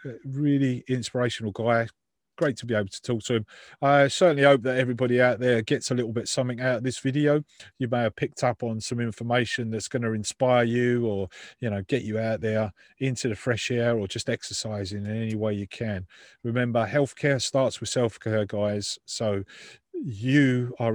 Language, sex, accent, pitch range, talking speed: English, male, British, 110-130 Hz, 195 wpm